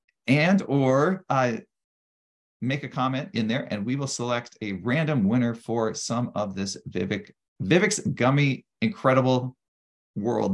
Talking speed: 130 wpm